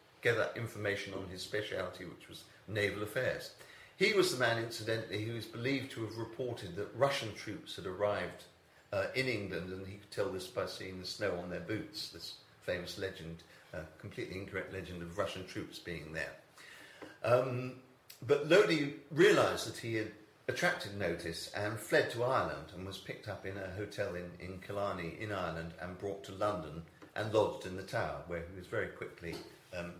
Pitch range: 95-125 Hz